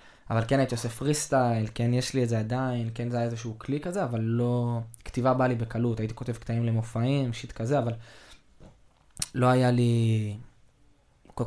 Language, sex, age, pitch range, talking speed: Hebrew, male, 20-39, 115-130 Hz, 180 wpm